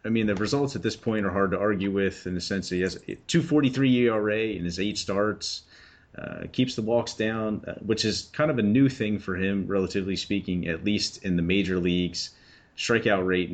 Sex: male